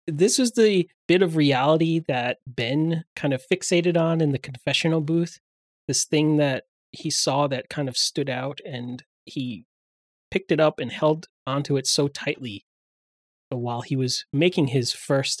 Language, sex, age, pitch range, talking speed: English, male, 30-49, 130-175 Hz, 170 wpm